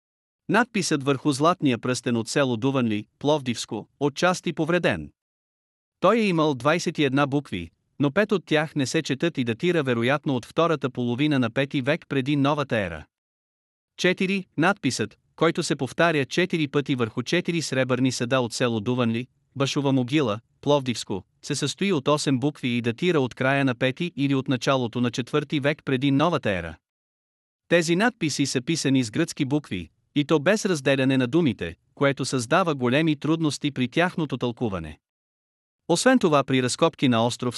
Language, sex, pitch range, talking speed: Bulgarian, male, 125-155 Hz, 155 wpm